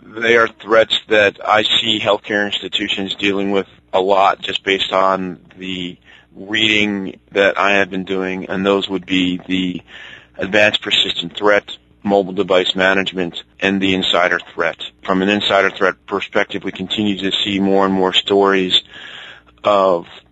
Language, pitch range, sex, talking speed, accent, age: English, 90-100 Hz, male, 150 wpm, American, 30-49